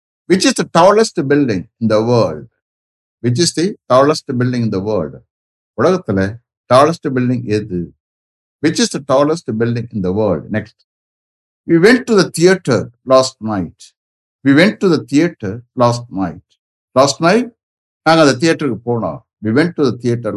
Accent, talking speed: Indian, 145 wpm